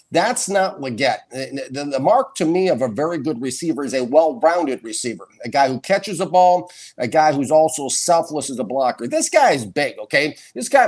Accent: American